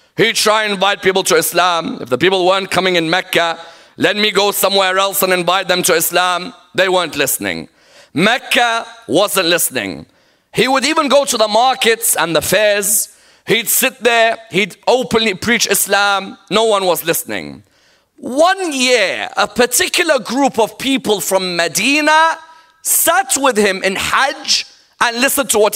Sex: male